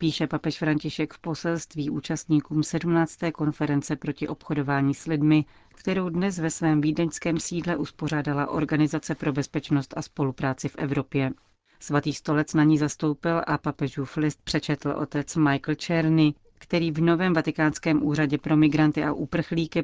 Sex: female